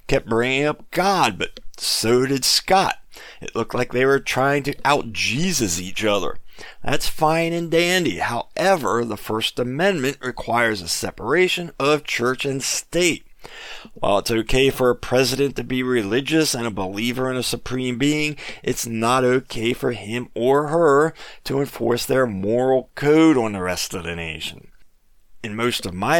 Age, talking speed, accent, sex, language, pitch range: 40-59, 165 wpm, American, male, English, 115-150 Hz